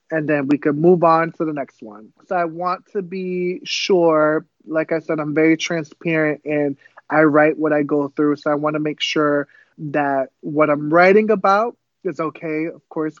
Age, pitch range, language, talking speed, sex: 20-39, 145-165 Hz, English, 200 wpm, male